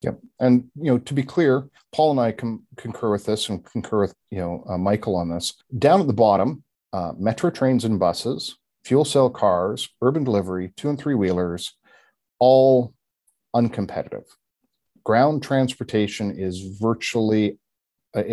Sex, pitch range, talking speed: male, 95-130 Hz, 160 wpm